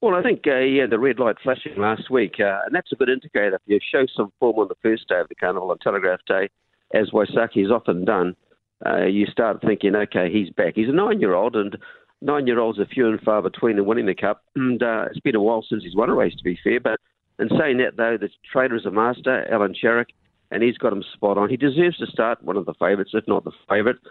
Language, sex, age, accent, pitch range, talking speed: English, male, 50-69, Australian, 105-120 Hz, 265 wpm